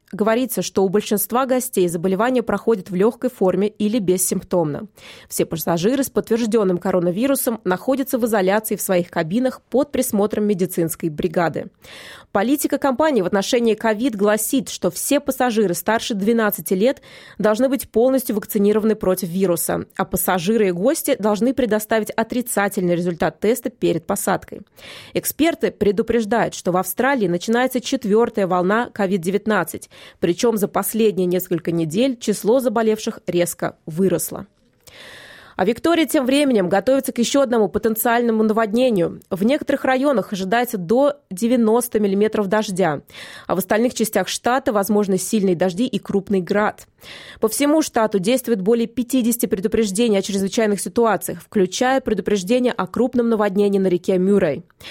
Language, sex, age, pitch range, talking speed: Russian, female, 20-39, 190-240 Hz, 130 wpm